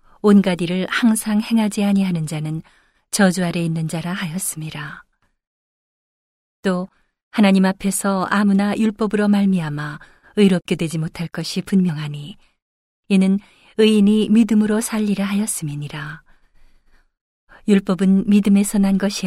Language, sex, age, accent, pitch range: Korean, female, 40-59, native, 170-205 Hz